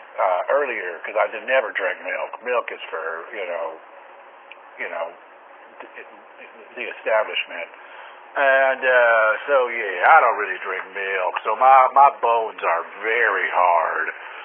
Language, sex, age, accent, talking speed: English, male, 50-69, American, 135 wpm